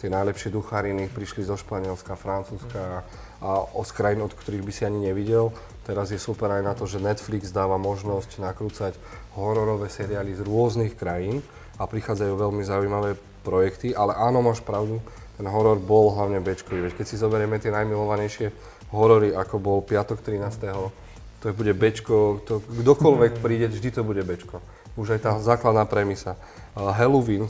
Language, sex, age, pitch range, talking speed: Slovak, male, 30-49, 100-115 Hz, 155 wpm